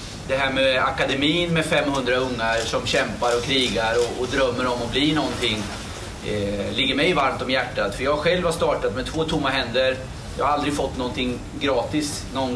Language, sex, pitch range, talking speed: Swedish, male, 115-145 Hz, 190 wpm